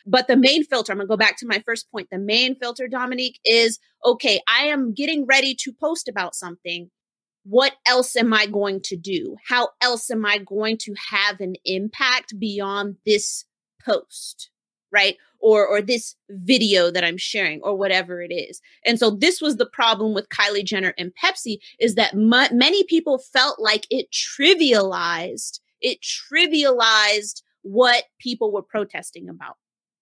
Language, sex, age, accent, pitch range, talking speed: English, female, 30-49, American, 210-320 Hz, 170 wpm